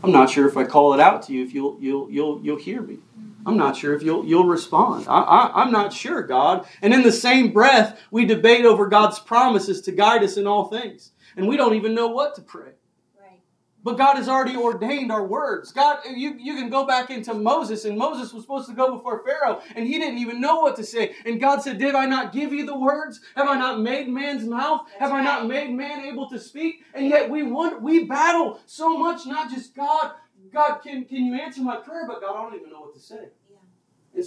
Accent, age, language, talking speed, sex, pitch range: American, 30-49, English, 240 wpm, male, 220-290 Hz